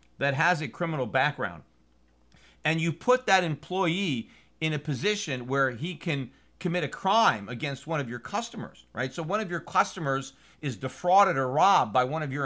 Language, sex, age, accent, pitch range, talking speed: English, male, 40-59, American, 145-200 Hz, 185 wpm